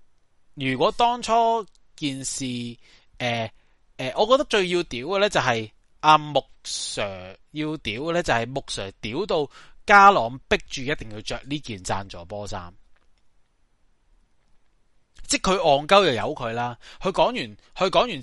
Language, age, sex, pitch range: Chinese, 30-49, male, 105-155 Hz